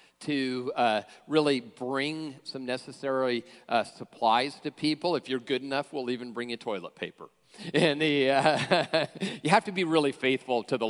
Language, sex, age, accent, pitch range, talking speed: English, male, 40-59, American, 125-155 Hz, 165 wpm